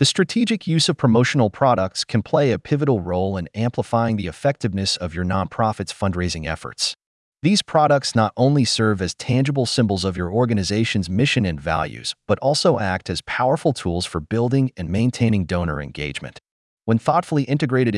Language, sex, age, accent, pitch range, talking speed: English, male, 30-49, American, 95-140 Hz, 165 wpm